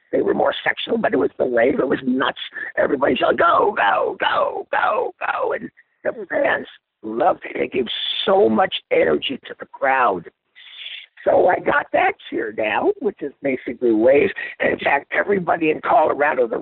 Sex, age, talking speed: male, 50-69, 175 wpm